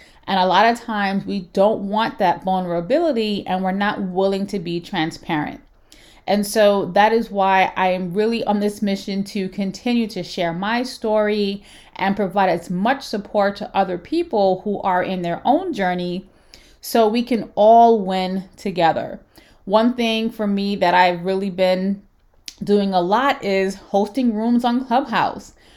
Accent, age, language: American, 30-49, English